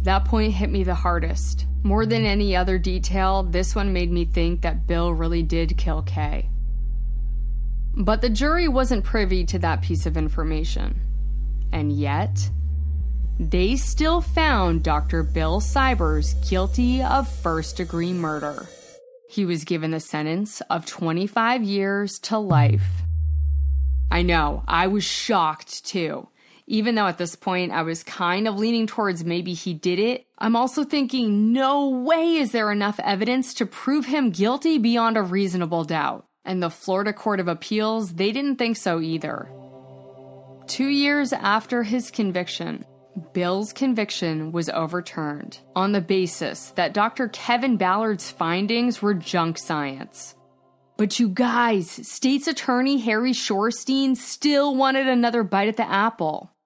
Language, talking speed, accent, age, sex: English, 145 wpm, American, 20-39, female